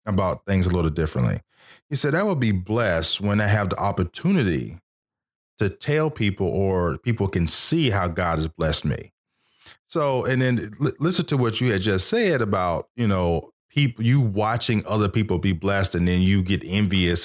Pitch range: 95-125 Hz